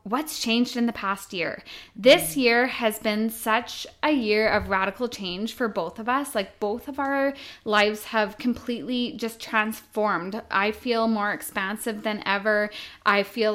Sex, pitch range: female, 205-240 Hz